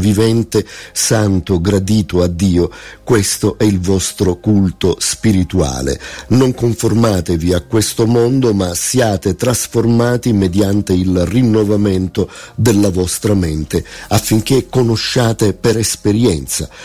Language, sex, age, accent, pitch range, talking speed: Italian, male, 50-69, native, 90-105 Hz, 105 wpm